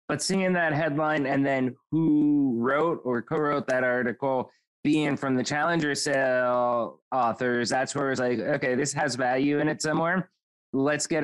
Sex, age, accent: male, 30-49, American